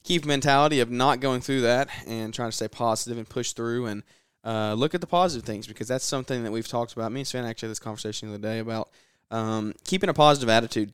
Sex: male